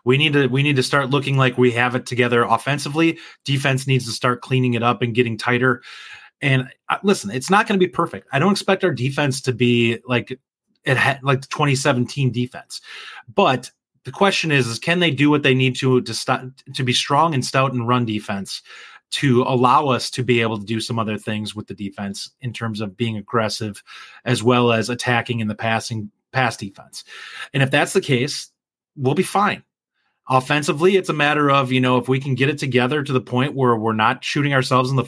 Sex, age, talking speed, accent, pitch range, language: male, 30-49, 215 wpm, American, 120-145 Hz, English